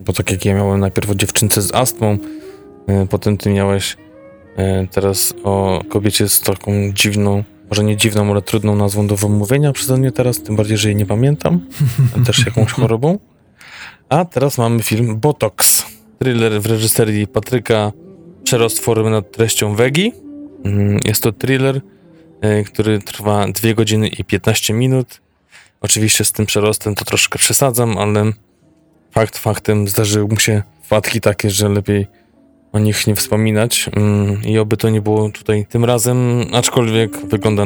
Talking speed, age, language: 150 wpm, 20-39, Polish